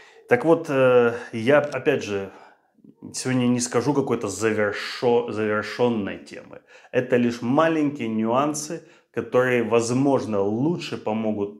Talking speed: 100 wpm